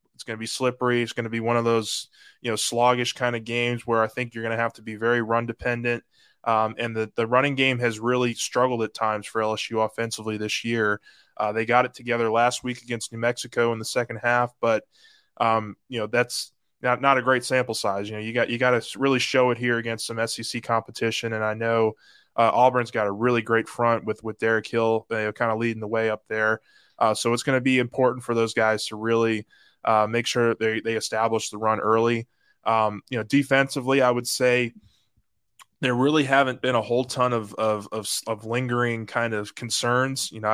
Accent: American